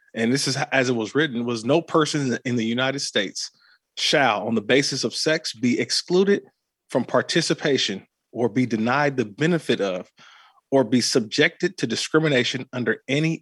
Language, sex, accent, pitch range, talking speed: English, male, American, 120-160 Hz, 165 wpm